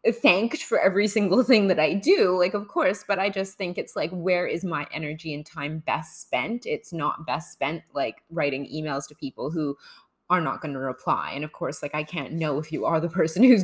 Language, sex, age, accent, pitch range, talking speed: English, female, 20-39, American, 160-215 Hz, 235 wpm